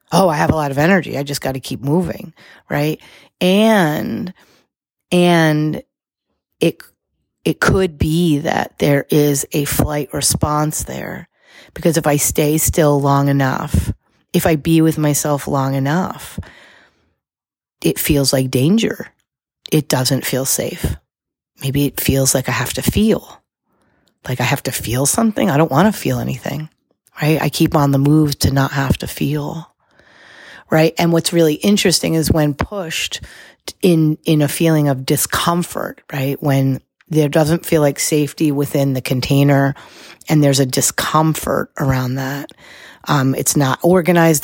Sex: female